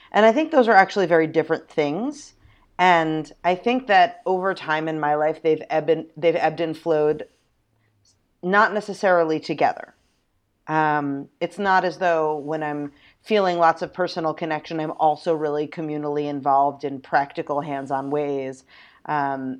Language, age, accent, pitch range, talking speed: English, 30-49, American, 145-175 Hz, 145 wpm